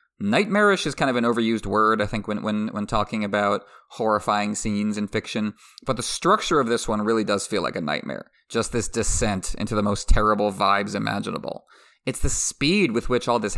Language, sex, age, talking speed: English, male, 30-49, 200 wpm